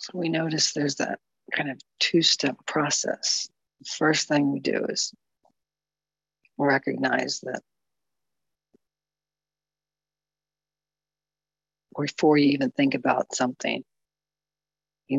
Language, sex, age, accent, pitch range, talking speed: English, female, 50-69, American, 140-155 Hz, 95 wpm